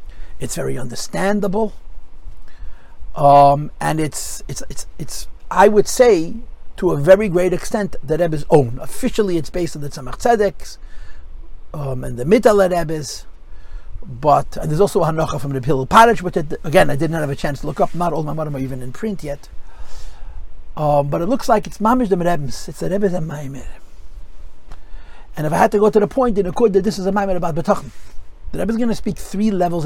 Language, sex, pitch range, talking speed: English, male, 125-195 Hz, 210 wpm